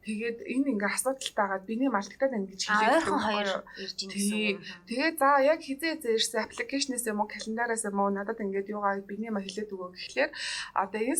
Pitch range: 205-265 Hz